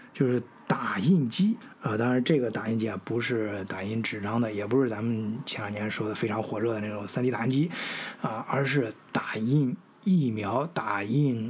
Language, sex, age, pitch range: Chinese, male, 20-39, 110-140 Hz